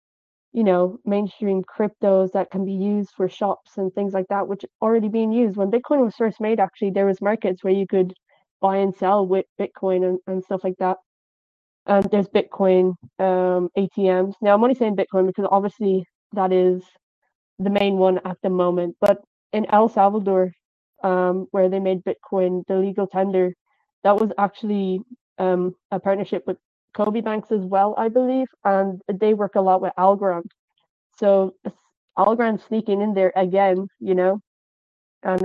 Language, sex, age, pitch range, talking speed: English, female, 20-39, 185-205 Hz, 170 wpm